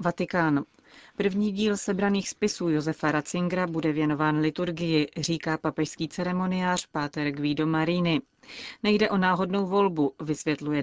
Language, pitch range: Czech, 155-180 Hz